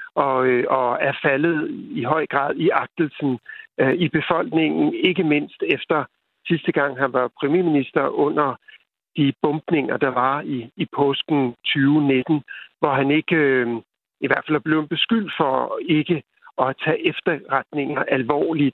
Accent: native